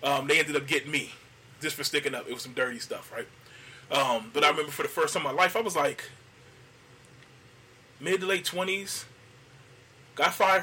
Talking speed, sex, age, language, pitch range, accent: 205 wpm, male, 20-39, English, 125-190 Hz, American